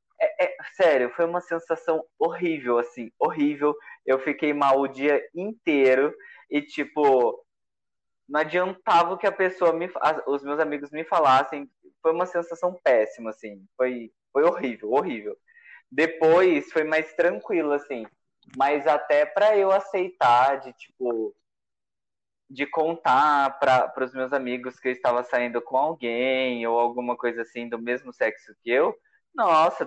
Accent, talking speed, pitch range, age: Brazilian, 145 wpm, 130-170 Hz, 20-39